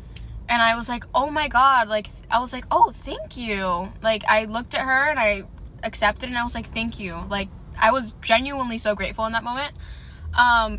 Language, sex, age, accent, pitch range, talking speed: English, female, 10-29, American, 190-250 Hz, 215 wpm